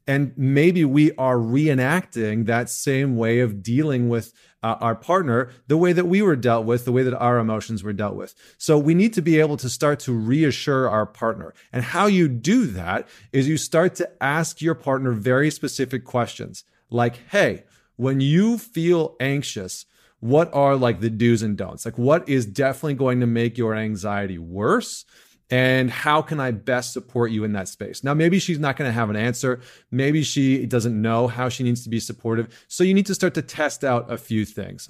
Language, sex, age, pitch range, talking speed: English, male, 30-49, 115-140 Hz, 205 wpm